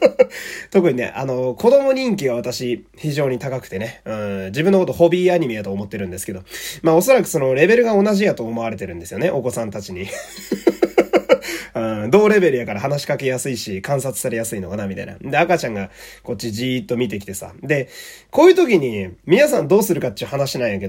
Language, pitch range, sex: Japanese, 110-175 Hz, male